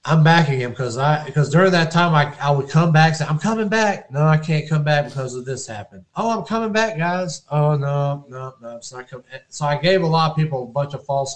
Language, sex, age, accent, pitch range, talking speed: English, male, 30-49, American, 120-145 Hz, 270 wpm